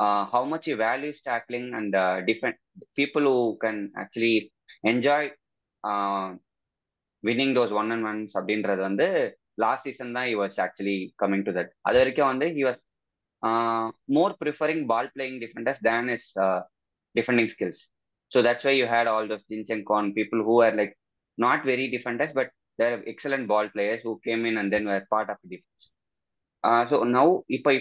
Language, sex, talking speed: Tamil, male, 185 wpm